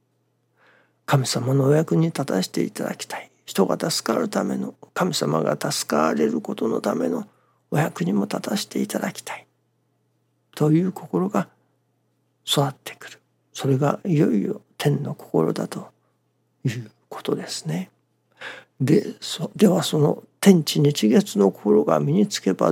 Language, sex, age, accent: Japanese, male, 60-79, native